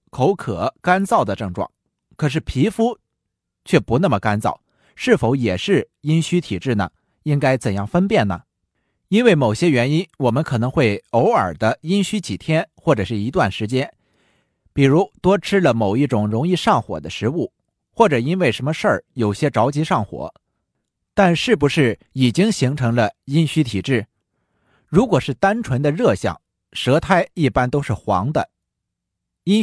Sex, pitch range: male, 110-175 Hz